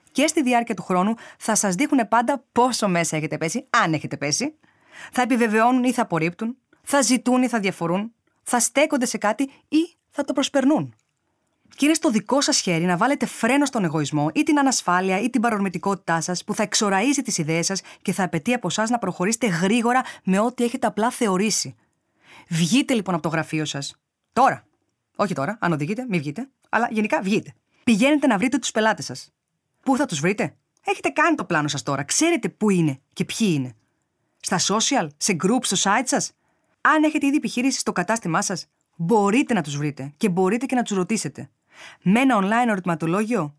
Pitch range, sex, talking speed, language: 175-255 Hz, female, 190 wpm, Greek